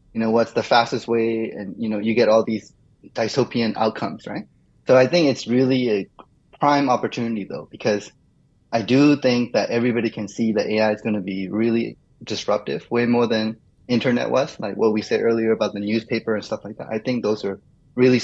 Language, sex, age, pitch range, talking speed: English, male, 20-39, 110-130 Hz, 205 wpm